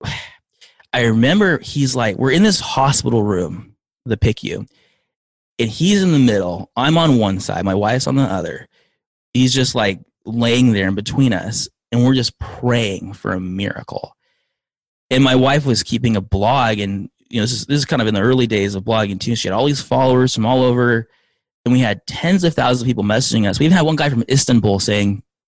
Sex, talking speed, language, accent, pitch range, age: male, 210 wpm, English, American, 100-130 Hz, 20-39